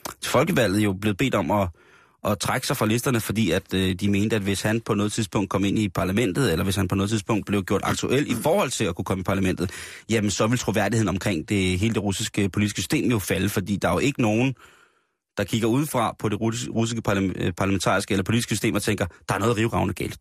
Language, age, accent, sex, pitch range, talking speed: Danish, 30-49, native, male, 100-120 Hz, 240 wpm